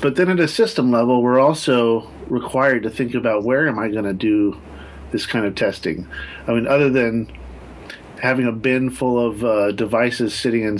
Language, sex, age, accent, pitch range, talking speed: English, male, 40-59, American, 110-130 Hz, 195 wpm